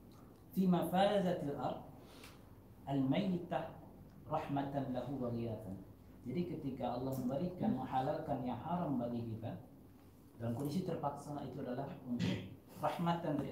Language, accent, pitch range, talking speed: Indonesian, native, 120-145 Hz, 80 wpm